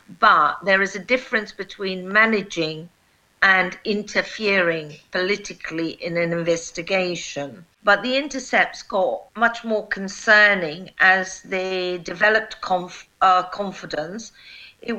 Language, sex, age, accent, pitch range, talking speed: English, female, 50-69, British, 180-220 Hz, 105 wpm